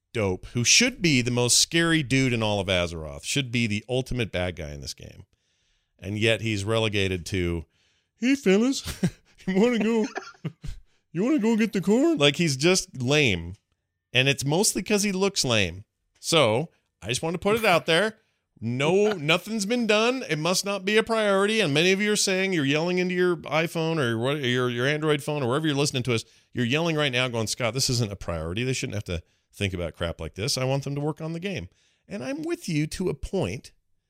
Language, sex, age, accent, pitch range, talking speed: English, male, 40-59, American, 105-175 Hz, 220 wpm